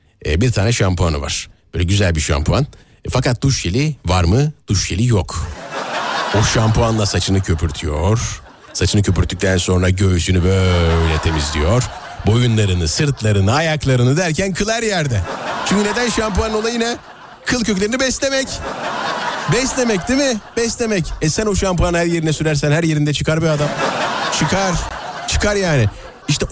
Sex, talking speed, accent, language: male, 140 wpm, native, Turkish